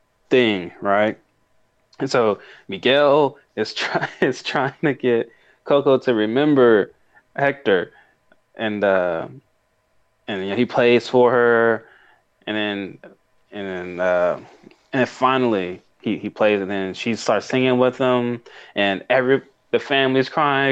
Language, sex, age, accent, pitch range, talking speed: English, male, 20-39, American, 100-135 Hz, 140 wpm